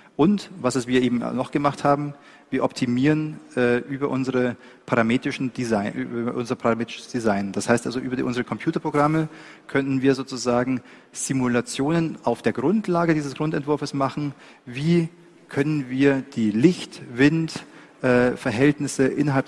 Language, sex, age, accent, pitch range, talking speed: German, male, 40-59, German, 120-150 Hz, 130 wpm